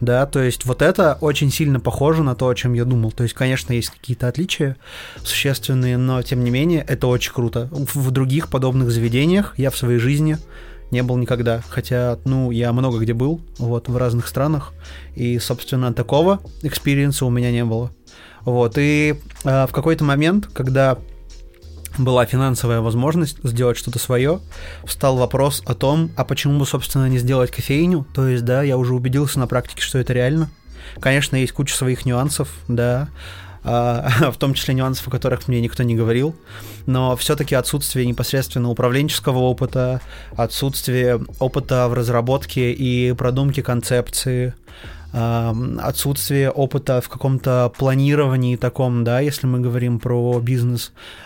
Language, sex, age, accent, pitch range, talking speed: Russian, male, 20-39, native, 120-140 Hz, 155 wpm